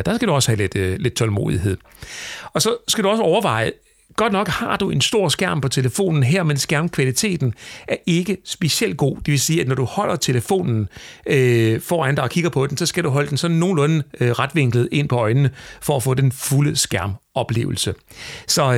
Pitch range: 115-160 Hz